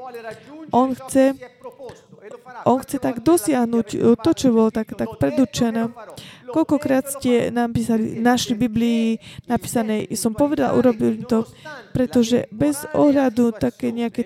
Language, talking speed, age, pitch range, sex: Slovak, 120 wpm, 20-39, 230-265 Hz, female